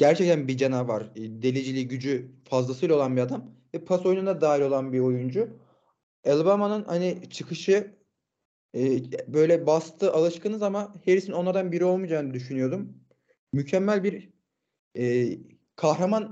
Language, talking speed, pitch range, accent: Turkish, 115 wpm, 140-185 Hz, native